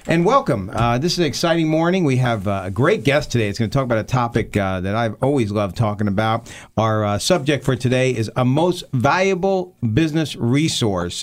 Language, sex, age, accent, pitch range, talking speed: English, male, 50-69, American, 110-150 Hz, 210 wpm